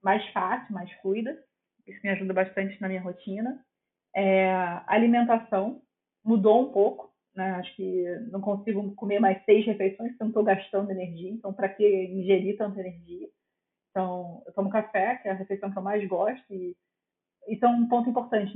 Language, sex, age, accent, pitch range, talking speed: Portuguese, female, 20-39, Brazilian, 190-220 Hz, 175 wpm